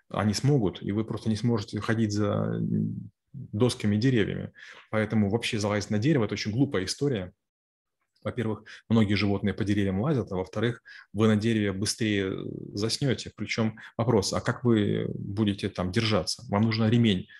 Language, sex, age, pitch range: Russian, male, 20-39, 100-115 Hz